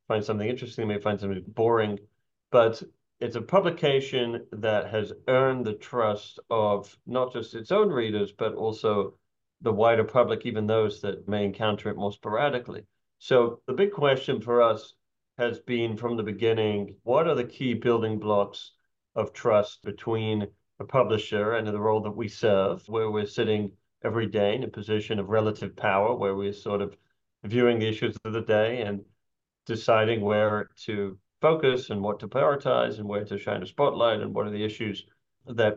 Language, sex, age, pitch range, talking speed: English, male, 40-59, 105-120 Hz, 175 wpm